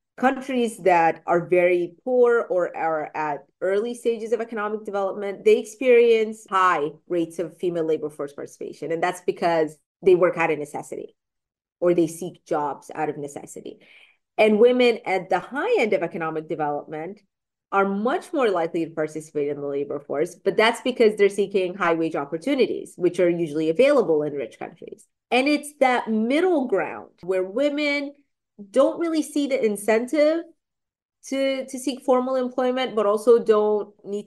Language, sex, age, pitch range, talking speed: English, female, 30-49, 175-245 Hz, 160 wpm